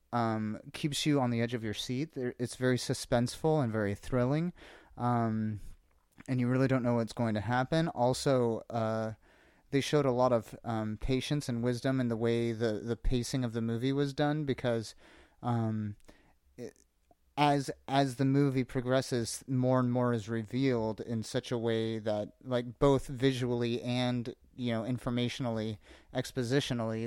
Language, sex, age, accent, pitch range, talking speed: English, male, 30-49, American, 115-135 Hz, 160 wpm